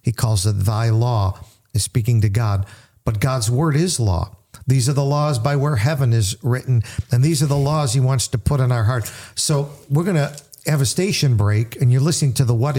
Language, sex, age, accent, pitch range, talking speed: English, male, 50-69, American, 115-140 Hz, 230 wpm